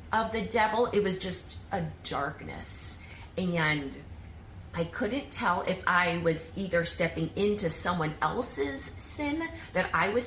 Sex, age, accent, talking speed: female, 30-49, American, 140 wpm